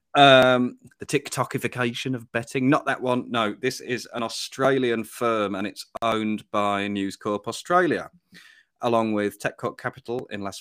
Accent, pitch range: British, 100-135 Hz